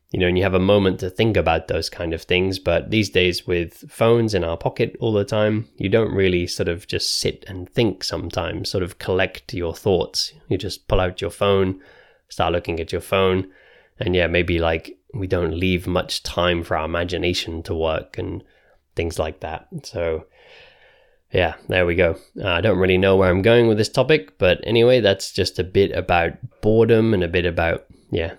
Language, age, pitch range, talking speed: English, 20-39, 90-110 Hz, 205 wpm